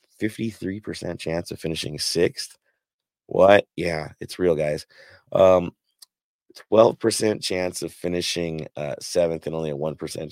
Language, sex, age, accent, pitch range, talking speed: English, male, 30-49, American, 80-100 Hz, 120 wpm